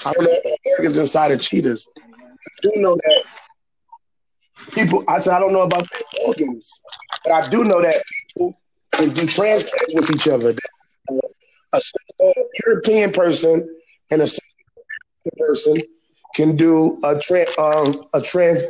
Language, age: English, 20-39